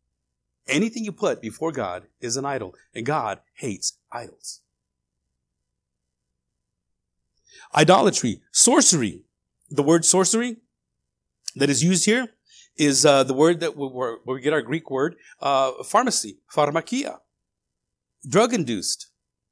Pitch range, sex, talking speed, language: 135-220 Hz, male, 110 wpm, English